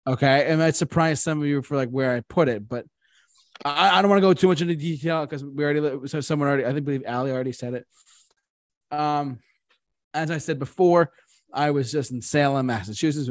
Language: English